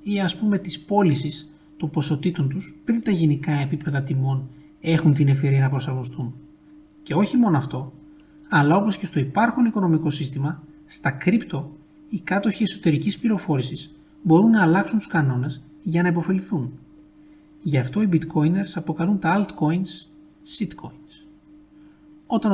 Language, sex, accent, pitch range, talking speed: Greek, male, native, 145-180 Hz, 140 wpm